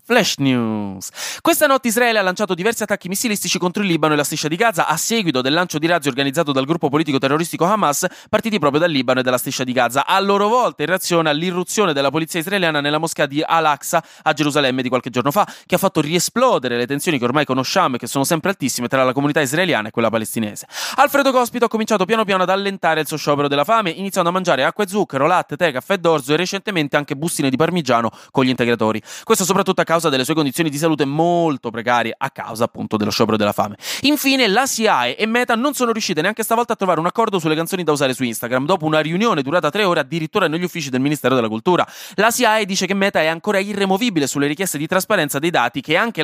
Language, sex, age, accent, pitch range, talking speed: Italian, male, 20-39, native, 130-195 Hz, 225 wpm